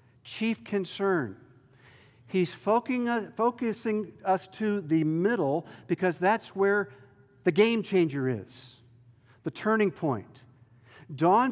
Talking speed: 100 wpm